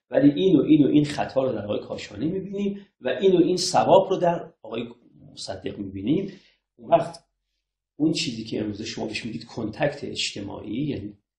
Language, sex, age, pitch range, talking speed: Persian, male, 40-59, 105-165 Hz, 175 wpm